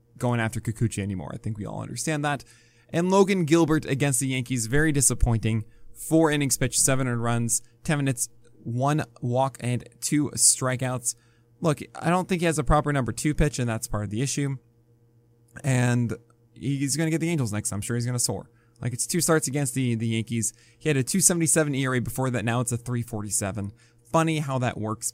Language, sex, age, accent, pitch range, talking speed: English, male, 20-39, American, 115-145 Hz, 200 wpm